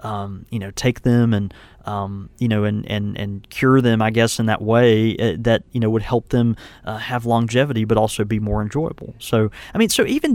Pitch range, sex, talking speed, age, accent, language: 110-130 Hz, male, 225 wpm, 20-39, American, English